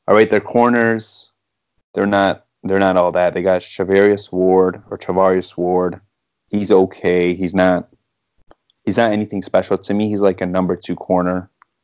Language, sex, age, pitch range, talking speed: English, male, 20-39, 95-100 Hz, 165 wpm